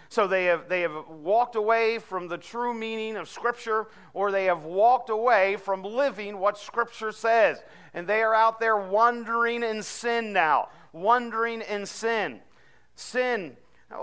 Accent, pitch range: American, 190-235 Hz